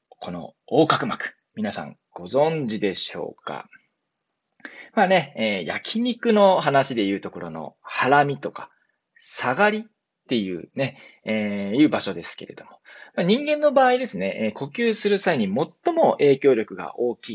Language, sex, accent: Japanese, male, native